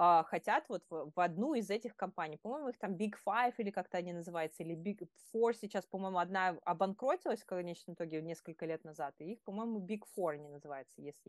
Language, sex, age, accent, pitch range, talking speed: Russian, female, 20-39, native, 175-245 Hz, 200 wpm